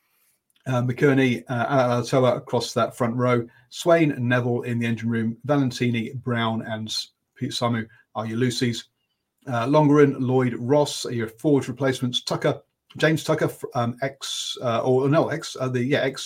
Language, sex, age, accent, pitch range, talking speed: English, male, 40-59, British, 120-135 Hz, 160 wpm